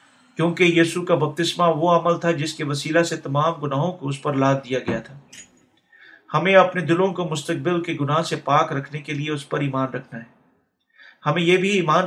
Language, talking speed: Urdu, 205 wpm